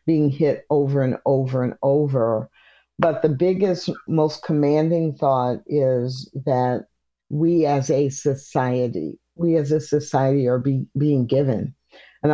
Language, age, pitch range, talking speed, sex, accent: English, 50-69, 135-160 Hz, 130 wpm, female, American